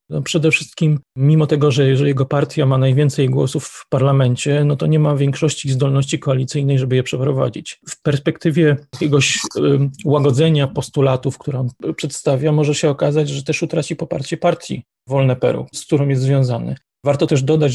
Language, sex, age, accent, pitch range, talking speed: Polish, male, 30-49, native, 135-155 Hz, 165 wpm